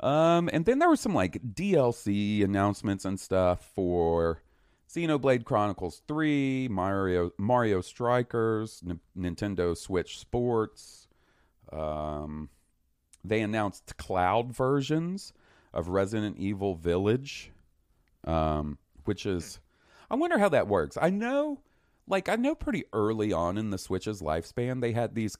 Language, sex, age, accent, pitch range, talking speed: English, male, 40-59, American, 80-110 Hz, 130 wpm